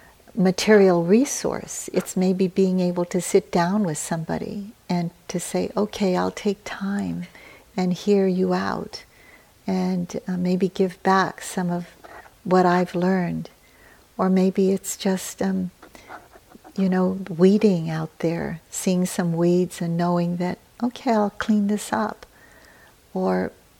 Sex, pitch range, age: female, 175-205 Hz, 60-79